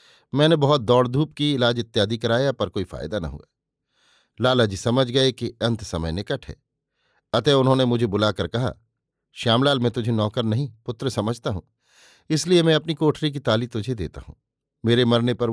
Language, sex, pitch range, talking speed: Hindi, male, 110-140 Hz, 180 wpm